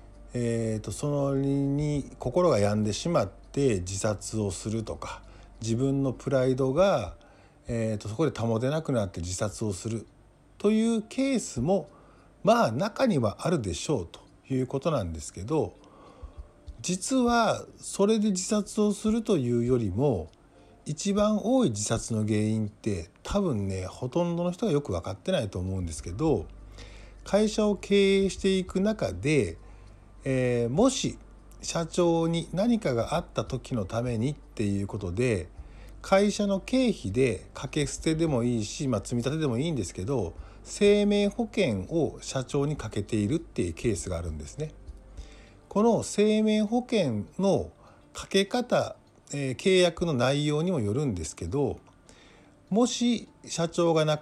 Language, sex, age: Japanese, male, 50-69